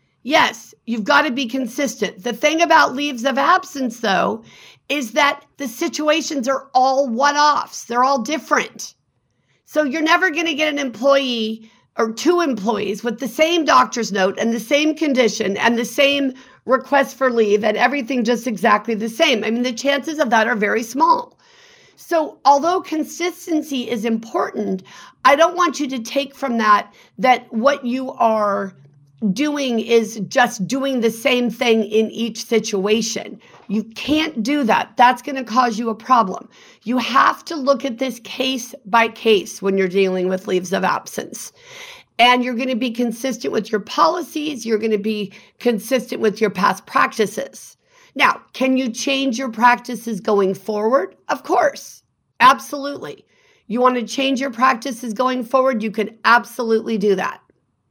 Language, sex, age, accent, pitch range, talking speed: English, female, 50-69, American, 220-280 Hz, 165 wpm